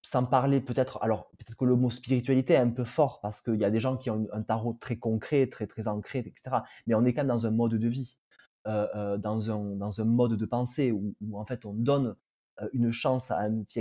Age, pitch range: 20-39, 110-130 Hz